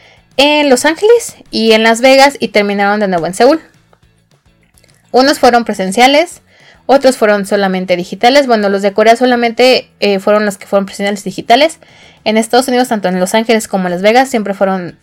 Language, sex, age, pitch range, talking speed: Spanish, female, 20-39, 200-265 Hz, 180 wpm